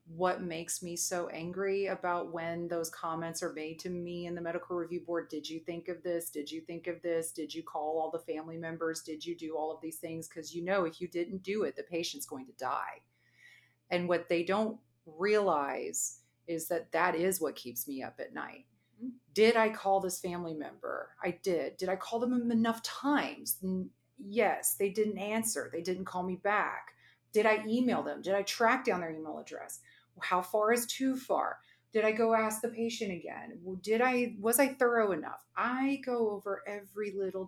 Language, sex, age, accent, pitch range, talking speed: English, female, 30-49, American, 165-215 Hz, 205 wpm